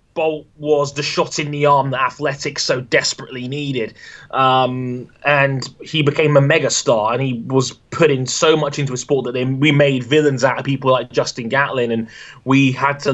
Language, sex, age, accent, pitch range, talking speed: English, male, 20-39, British, 125-150 Hz, 195 wpm